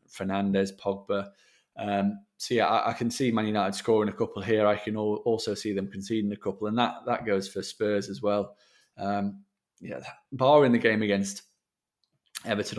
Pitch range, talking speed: 100-110 Hz, 185 wpm